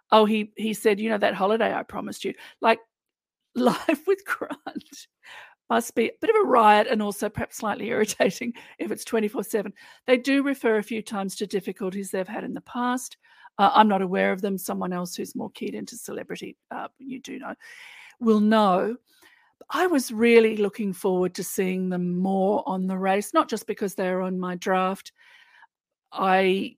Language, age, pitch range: English, 50-69, 190-240 Hz